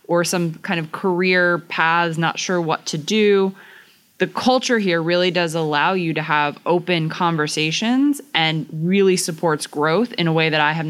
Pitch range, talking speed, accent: 160-185 Hz, 175 wpm, American